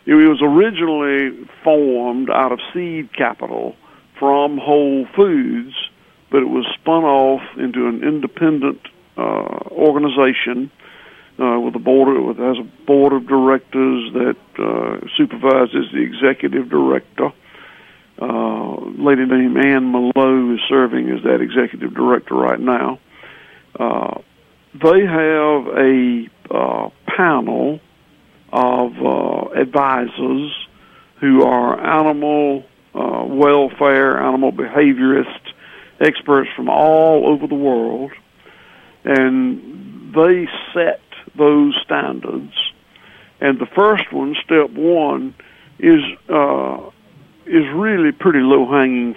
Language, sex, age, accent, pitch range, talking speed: English, male, 60-79, American, 130-155 Hz, 110 wpm